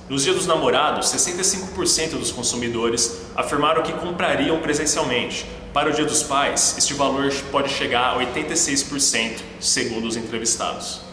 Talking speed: 135 wpm